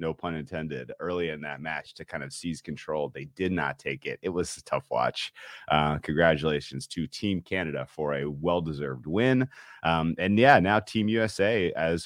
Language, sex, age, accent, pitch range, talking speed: English, male, 30-49, American, 75-95 Hz, 190 wpm